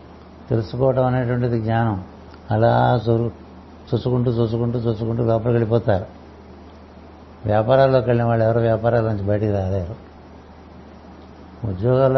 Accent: native